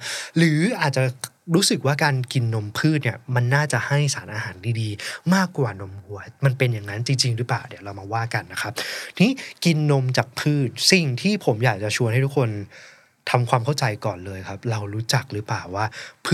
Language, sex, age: Thai, male, 20-39